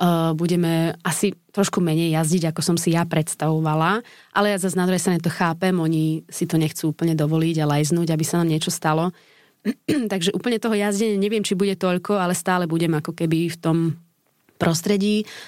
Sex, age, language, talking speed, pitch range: female, 20-39, Slovak, 175 wpm, 165-190 Hz